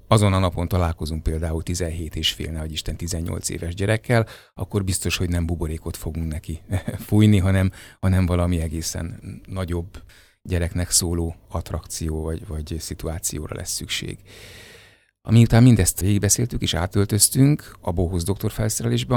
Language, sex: Hungarian, male